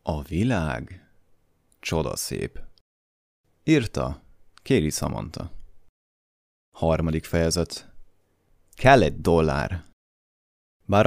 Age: 30-49